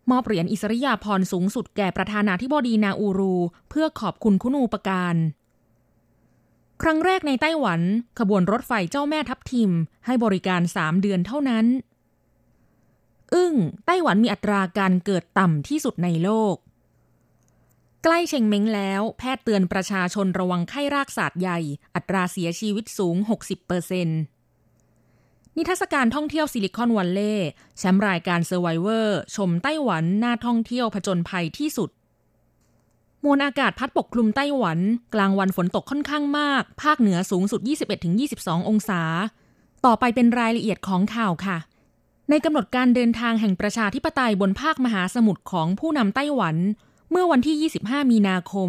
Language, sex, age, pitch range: Thai, female, 20-39, 185-255 Hz